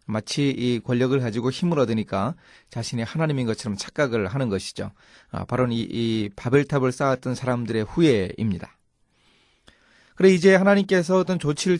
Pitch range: 120-160 Hz